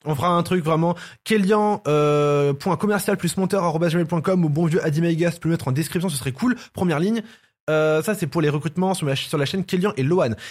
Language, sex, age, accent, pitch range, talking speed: French, male, 20-39, French, 135-185 Hz, 240 wpm